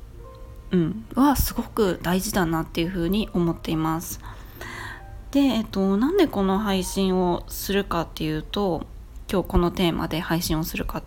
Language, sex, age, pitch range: Japanese, female, 20-39, 170-245 Hz